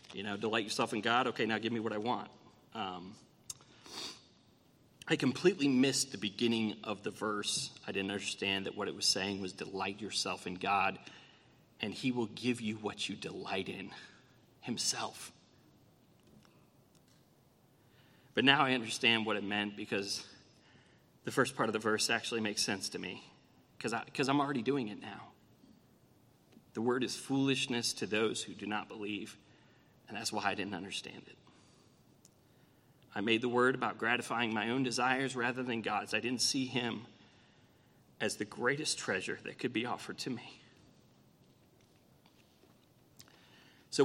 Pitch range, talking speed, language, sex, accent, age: 110-130 Hz, 155 wpm, English, male, American, 30-49